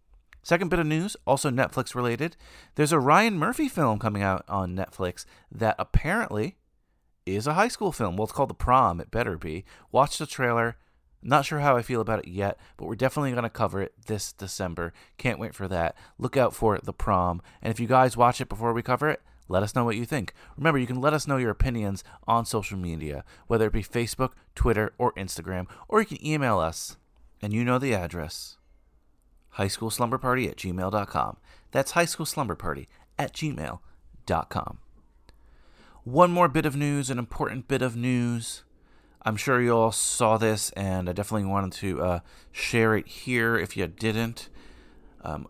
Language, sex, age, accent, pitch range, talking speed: English, male, 30-49, American, 95-130 Hz, 185 wpm